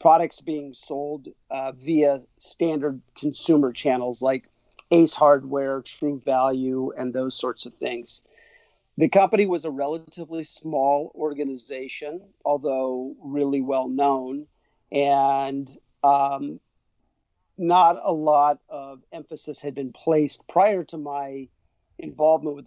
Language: English